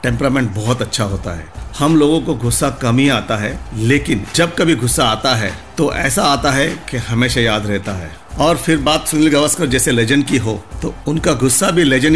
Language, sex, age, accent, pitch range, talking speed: Hindi, male, 50-69, native, 105-130 Hz, 205 wpm